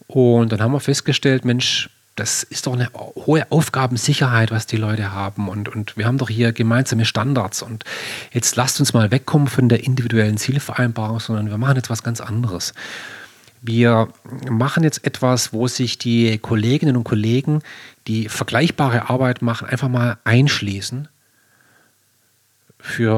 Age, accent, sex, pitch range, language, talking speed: 40-59, German, male, 115-145 Hz, German, 155 wpm